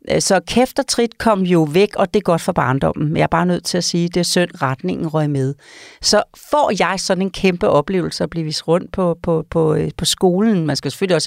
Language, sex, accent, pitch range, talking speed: Danish, female, native, 165-215 Hz, 245 wpm